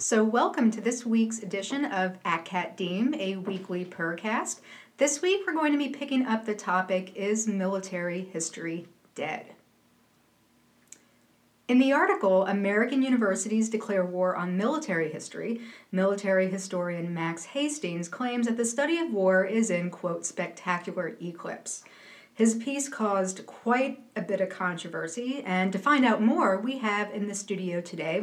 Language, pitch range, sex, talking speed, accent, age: English, 180-235 Hz, female, 150 wpm, American, 40-59